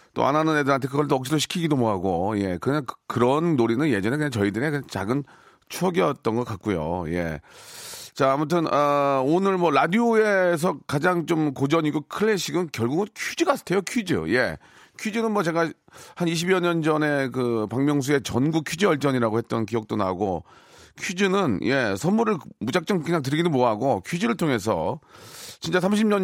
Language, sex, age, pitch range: Korean, male, 40-59, 120-170 Hz